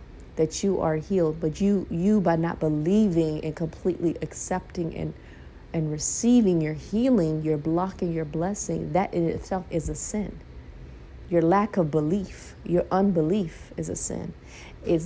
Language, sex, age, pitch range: English, female, 30-49, 155-185 Hz